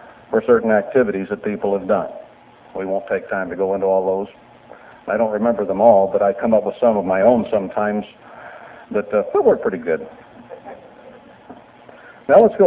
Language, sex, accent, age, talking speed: English, male, American, 60-79, 190 wpm